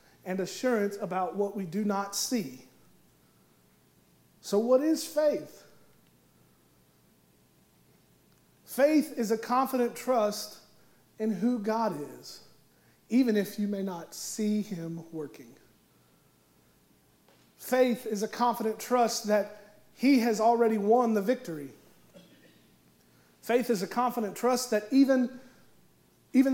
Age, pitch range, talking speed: 40-59, 170-225 Hz, 110 wpm